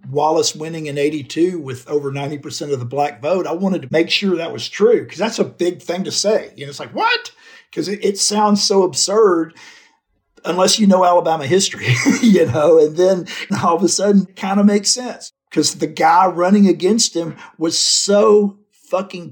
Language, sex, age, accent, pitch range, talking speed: English, male, 50-69, American, 150-200 Hz, 195 wpm